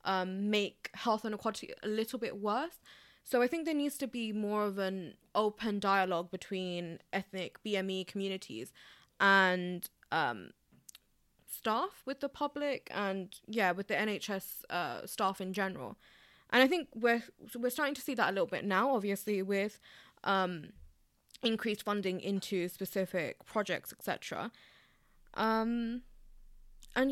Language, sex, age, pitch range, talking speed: English, female, 20-39, 190-225 Hz, 140 wpm